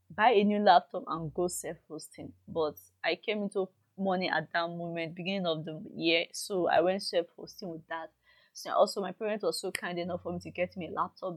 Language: English